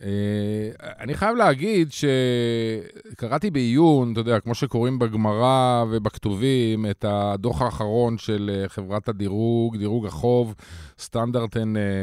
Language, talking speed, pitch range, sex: Hebrew, 105 wpm, 110-150 Hz, male